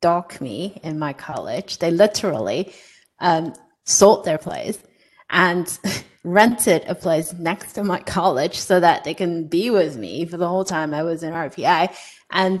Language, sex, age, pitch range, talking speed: English, female, 30-49, 170-210 Hz, 165 wpm